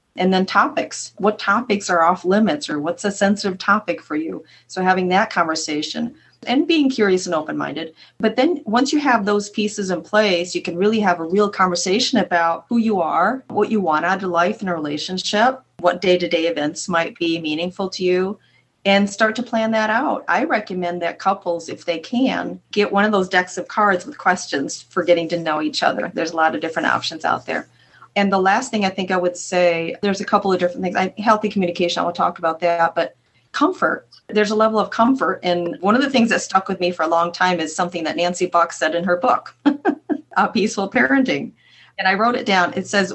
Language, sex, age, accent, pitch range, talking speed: English, female, 30-49, American, 175-210 Hz, 220 wpm